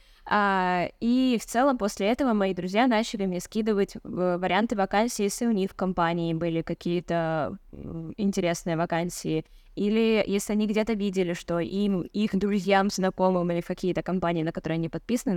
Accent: native